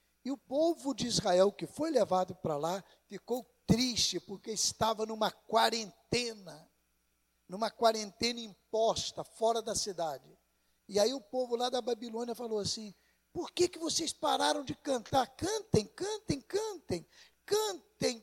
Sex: male